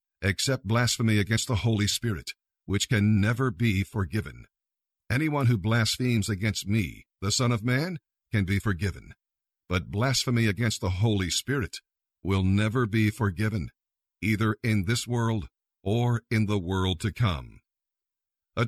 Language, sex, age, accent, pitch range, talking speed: English, male, 50-69, American, 100-120 Hz, 140 wpm